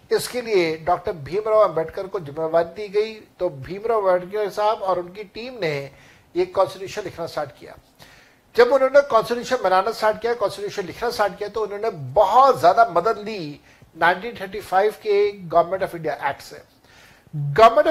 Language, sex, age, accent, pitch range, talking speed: Hindi, male, 60-79, native, 180-230 Hz, 140 wpm